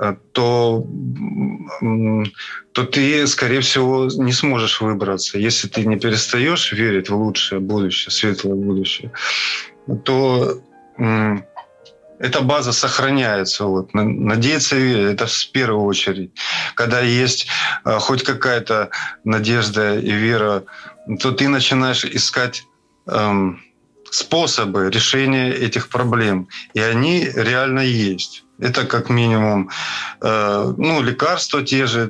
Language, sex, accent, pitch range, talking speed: Russian, male, native, 100-125 Hz, 110 wpm